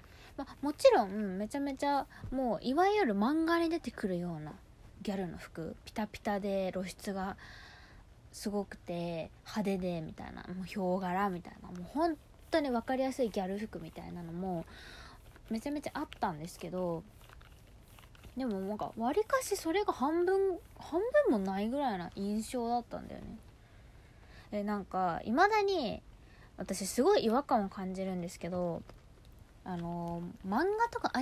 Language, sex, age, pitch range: Japanese, female, 20-39, 175-260 Hz